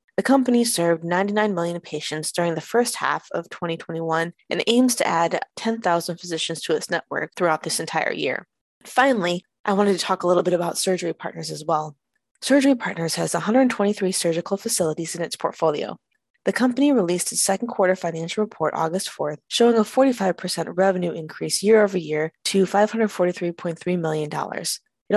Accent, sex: American, female